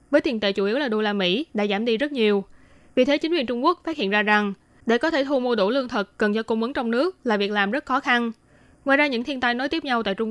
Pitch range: 210-260 Hz